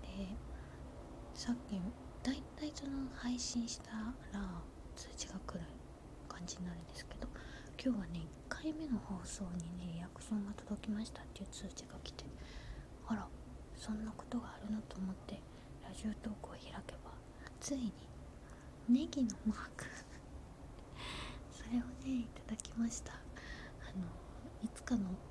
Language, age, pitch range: Japanese, 20-39, 175-220 Hz